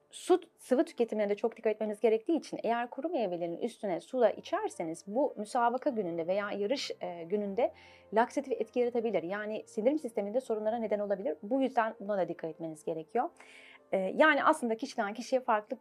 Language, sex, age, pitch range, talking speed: Turkish, female, 30-49, 195-245 Hz, 160 wpm